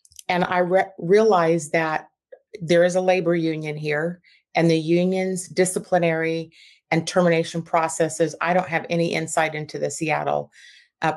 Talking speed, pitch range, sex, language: 140 wpm, 170-210 Hz, female, English